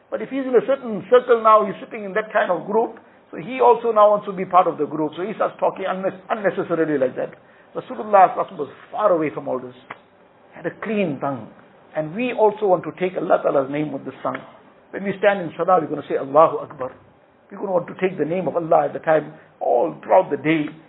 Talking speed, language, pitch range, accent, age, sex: 245 wpm, English, 150-195 Hz, Indian, 60-79, male